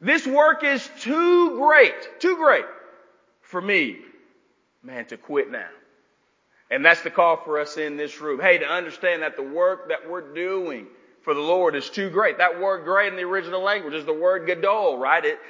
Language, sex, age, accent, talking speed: English, male, 40-59, American, 195 wpm